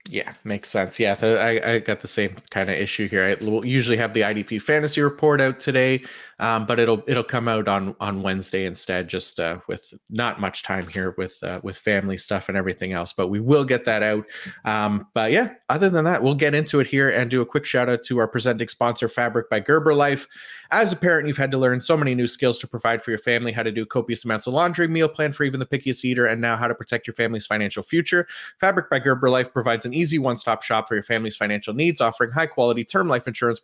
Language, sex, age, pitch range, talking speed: English, male, 30-49, 110-135 Hz, 245 wpm